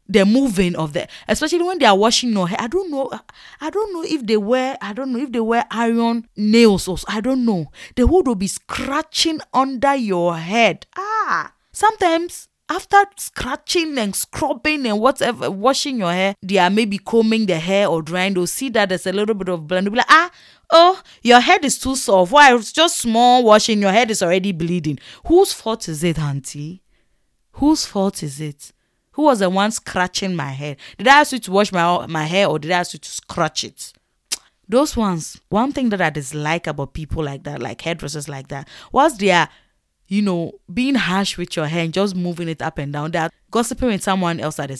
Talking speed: 215 wpm